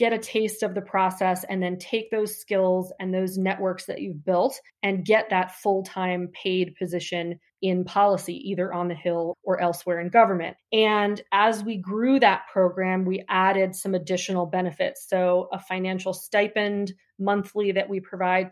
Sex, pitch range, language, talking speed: female, 180-210 Hz, English, 170 wpm